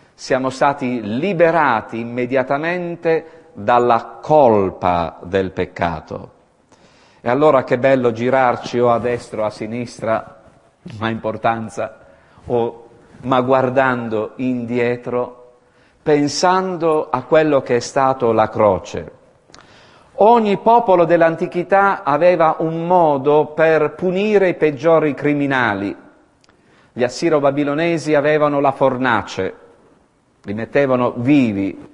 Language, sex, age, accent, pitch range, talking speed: Italian, male, 50-69, native, 120-165 Hz, 100 wpm